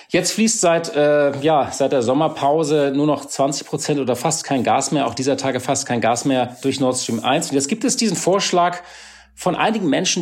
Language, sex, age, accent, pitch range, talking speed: German, male, 40-59, German, 125-170 Hz, 215 wpm